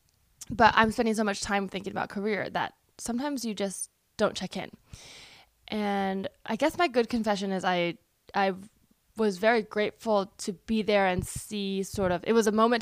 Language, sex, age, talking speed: English, female, 20-39, 185 wpm